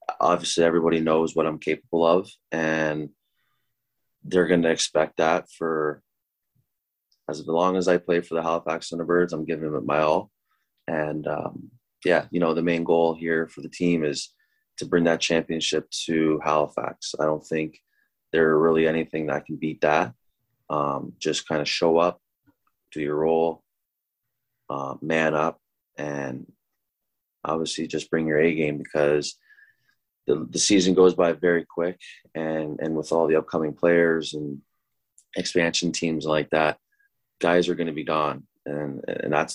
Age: 20-39